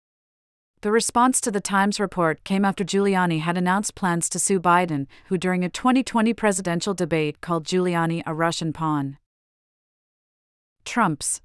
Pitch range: 165-205 Hz